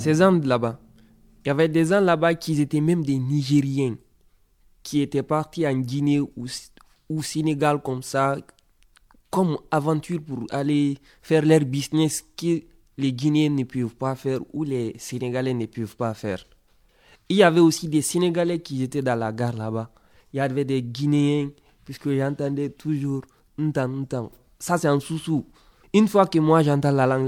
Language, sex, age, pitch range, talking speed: French, male, 20-39, 120-150 Hz, 170 wpm